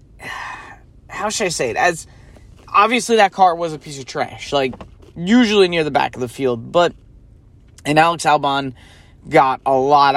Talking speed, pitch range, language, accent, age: 170 wpm, 125-190 Hz, English, American, 20-39